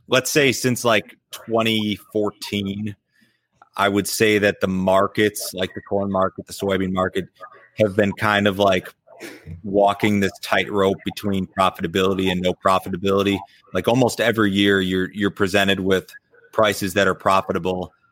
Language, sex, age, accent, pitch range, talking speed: English, male, 30-49, American, 95-105 Hz, 140 wpm